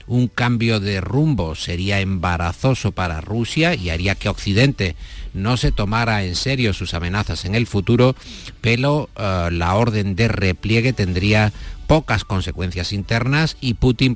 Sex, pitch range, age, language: male, 95-125 Hz, 50-69, Spanish